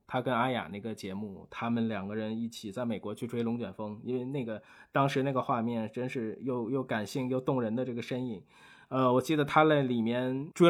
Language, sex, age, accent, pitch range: Chinese, male, 20-39, native, 120-155 Hz